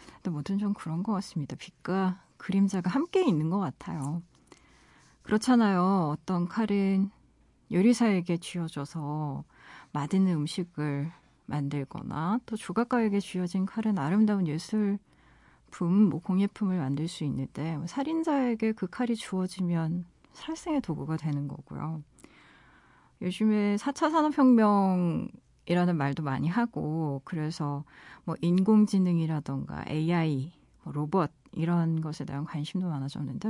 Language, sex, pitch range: Korean, female, 155-210 Hz